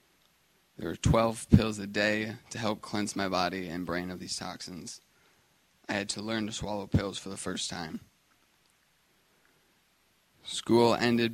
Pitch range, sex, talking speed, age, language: 100-115 Hz, male, 155 wpm, 20-39, English